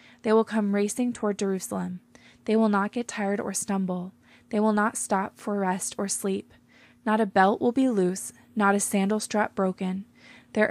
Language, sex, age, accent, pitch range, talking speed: English, female, 20-39, American, 190-220 Hz, 185 wpm